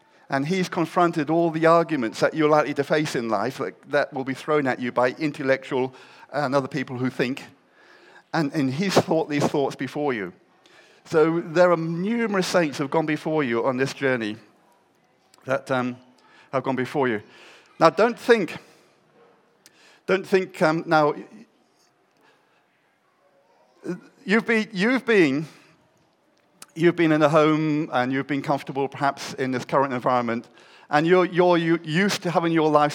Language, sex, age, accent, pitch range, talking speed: English, male, 50-69, British, 140-175 Hz, 155 wpm